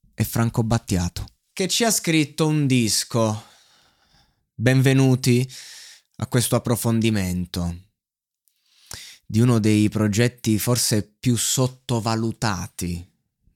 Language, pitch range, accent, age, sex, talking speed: Italian, 95-120 Hz, native, 20-39, male, 90 wpm